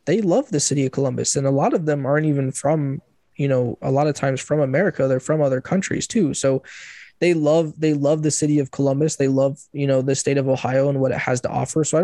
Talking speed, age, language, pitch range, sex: 260 wpm, 20-39, English, 135-150 Hz, male